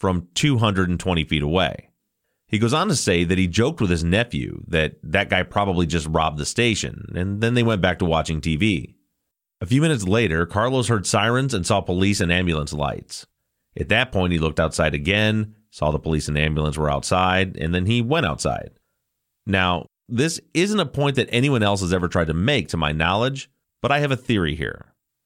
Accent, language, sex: American, English, male